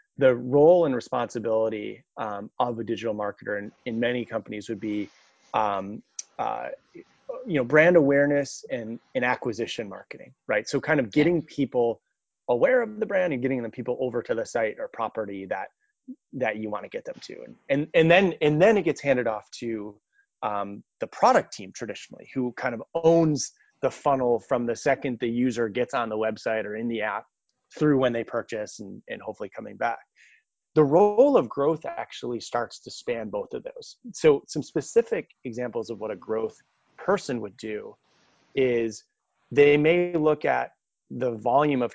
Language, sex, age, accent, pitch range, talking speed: English, male, 30-49, American, 115-145 Hz, 180 wpm